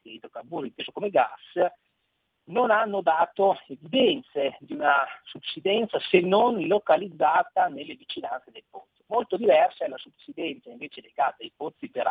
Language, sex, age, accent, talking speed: Italian, male, 40-59, native, 150 wpm